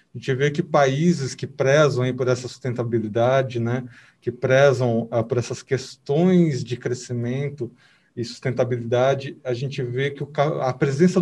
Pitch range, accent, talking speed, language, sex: 125-150 Hz, Brazilian, 160 wpm, Portuguese, male